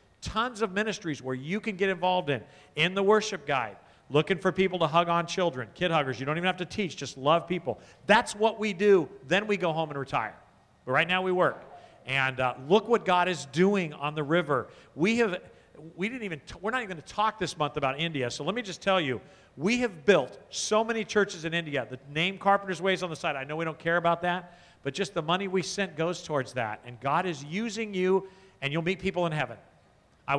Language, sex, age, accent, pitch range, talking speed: English, male, 50-69, American, 145-190 Hz, 240 wpm